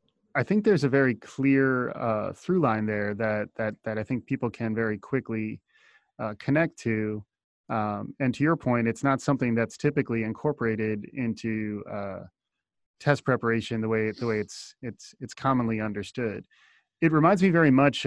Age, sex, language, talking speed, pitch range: 30-49, male, English, 170 wpm, 110-135 Hz